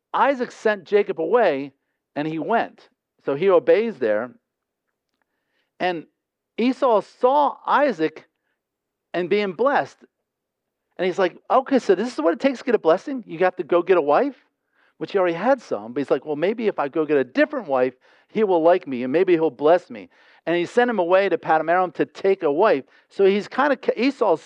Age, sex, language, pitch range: 50-69, male, English, 160-245 Hz